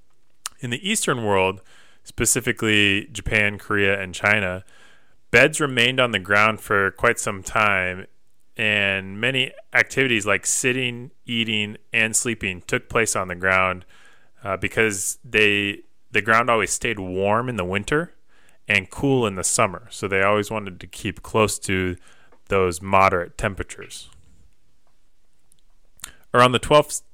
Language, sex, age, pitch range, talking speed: English, male, 30-49, 95-120 Hz, 135 wpm